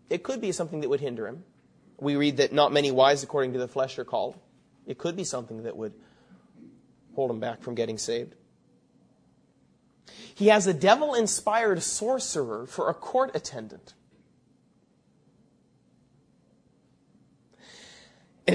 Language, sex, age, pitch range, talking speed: English, male, 30-49, 140-205 Hz, 135 wpm